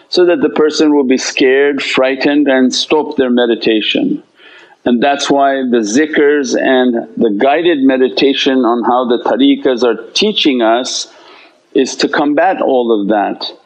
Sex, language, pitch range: male, English, 125-155 Hz